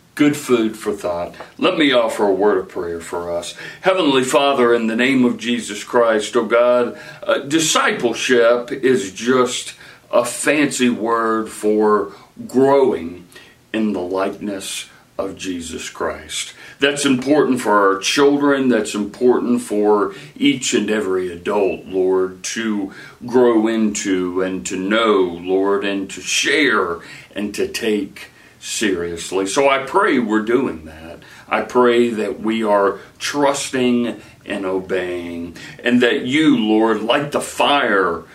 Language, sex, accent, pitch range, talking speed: English, male, American, 95-125 Hz, 135 wpm